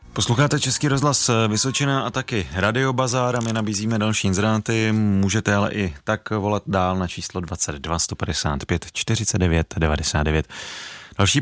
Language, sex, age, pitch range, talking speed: Czech, male, 30-49, 90-115 Hz, 130 wpm